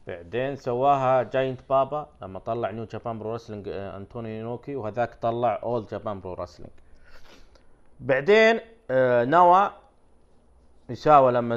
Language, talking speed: Arabic, 115 wpm